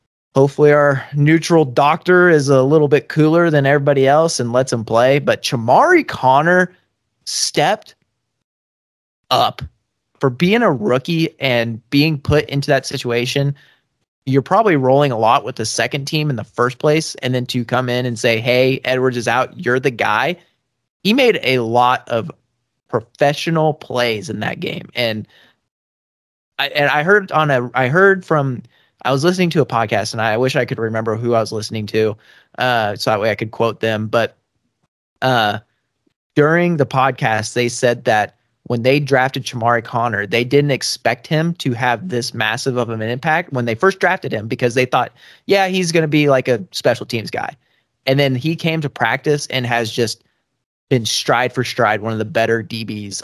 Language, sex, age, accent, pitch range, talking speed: English, male, 30-49, American, 120-150 Hz, 185 wpm